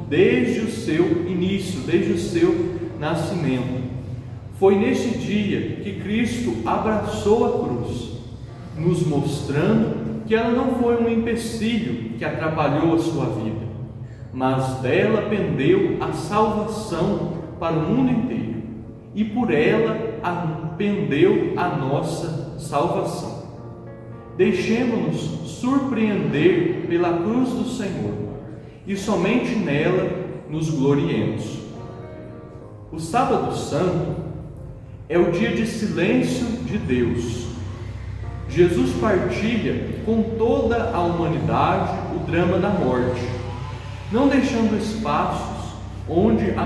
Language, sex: Portuguese, male